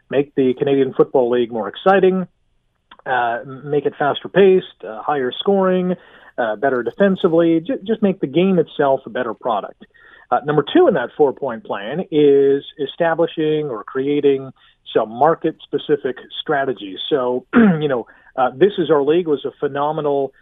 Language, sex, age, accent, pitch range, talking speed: English, male, 40-59, American, 135-185 Hz, 150 wpm